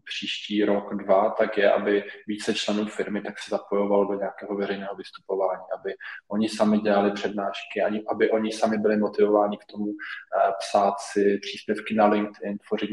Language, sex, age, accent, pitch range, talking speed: Czech, male, 20-39, native, 100-105 Hz, 160 wpm